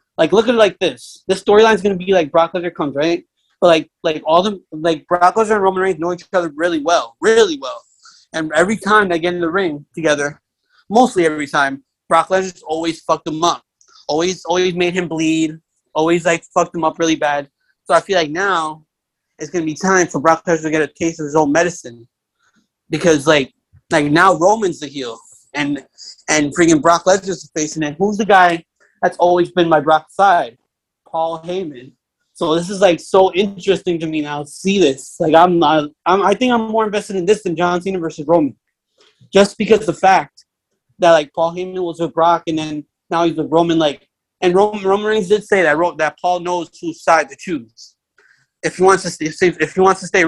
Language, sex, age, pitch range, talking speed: English, male, 30-49, 155-190 Hz, 215 wpm